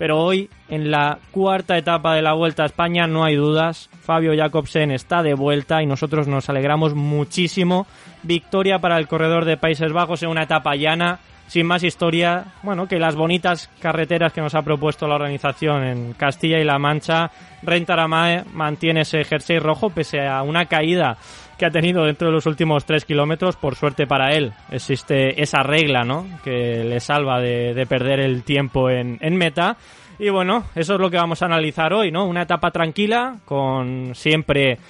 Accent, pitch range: Spanish, 135-165 Hz